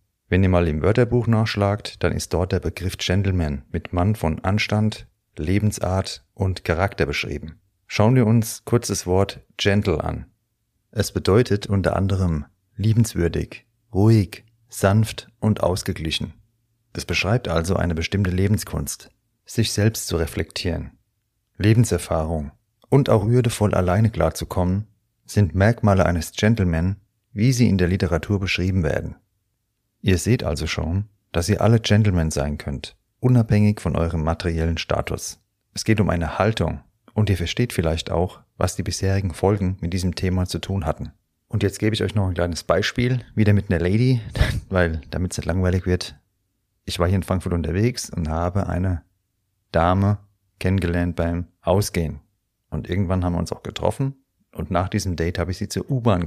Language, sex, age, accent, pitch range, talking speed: German, male, 40-59, German, 85-105 Hz, 155 wpm